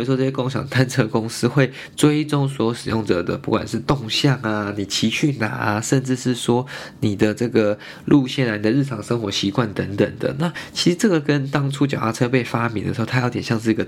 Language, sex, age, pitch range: Chinese, male, 20-39, 110-135 Hz